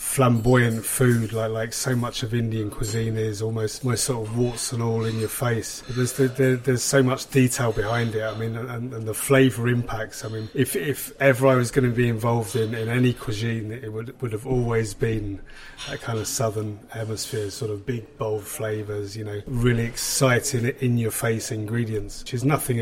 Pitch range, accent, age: 110-130 Hz, British, 30-49